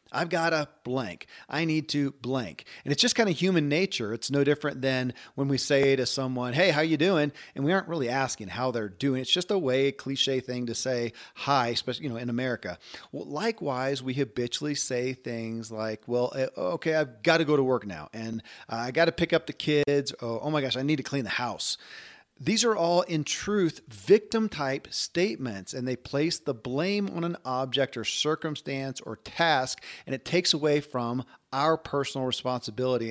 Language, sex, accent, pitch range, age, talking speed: English, male, American, 125-160 Hz, 40-59, 205 wpm